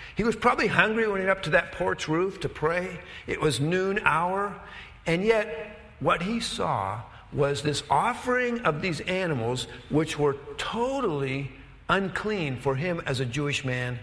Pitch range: 135-200 Hz